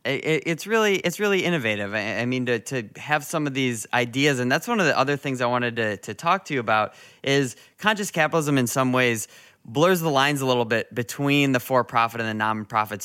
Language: English